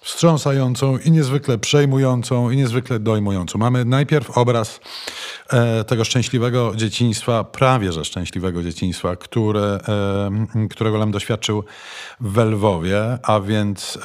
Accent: native